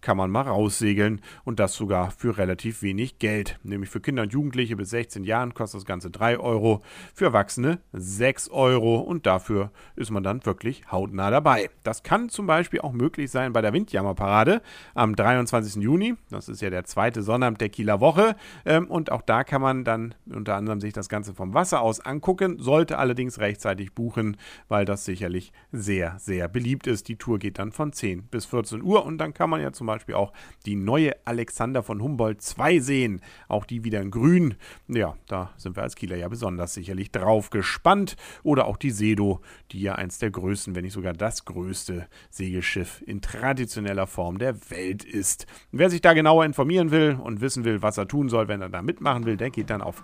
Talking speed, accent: 200 wpm, German